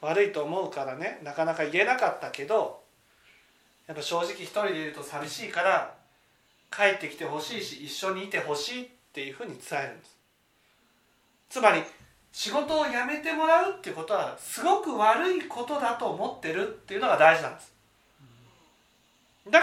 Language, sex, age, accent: Japanese, male, 40-59, native